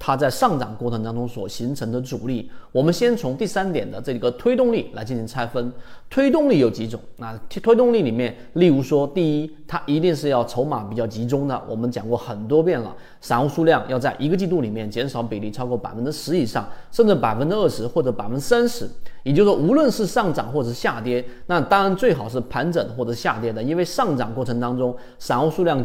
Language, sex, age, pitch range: Chinese, male, 30-49, 120-170 Hz